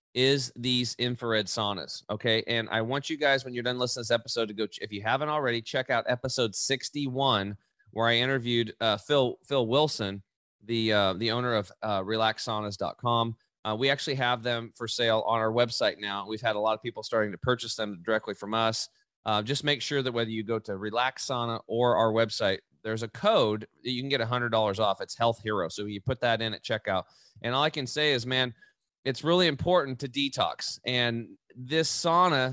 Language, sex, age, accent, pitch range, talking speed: English, male, 30-49, American, 110-130 Hz, 210 wpm